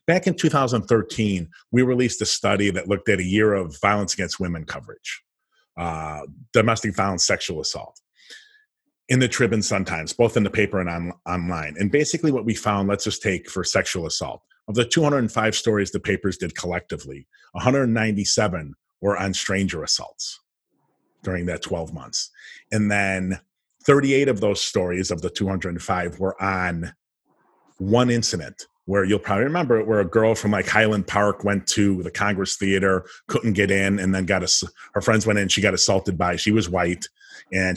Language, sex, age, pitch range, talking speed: English, male, 40-59, 95-115 Hz, 175 wpm